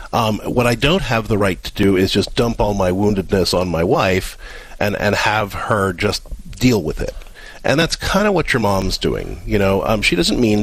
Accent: American